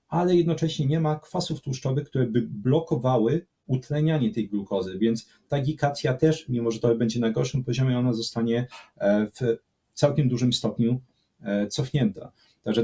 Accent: native